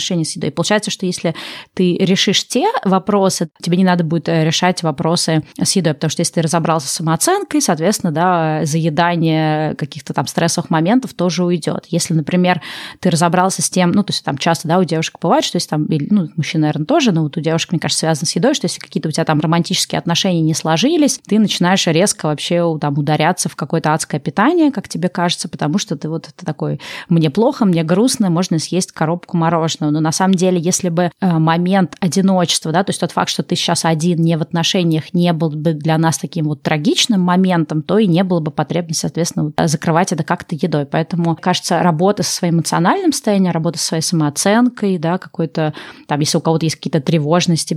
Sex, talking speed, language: female, 200 wpm, Russian